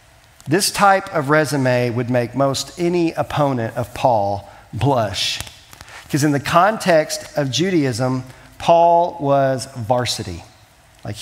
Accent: American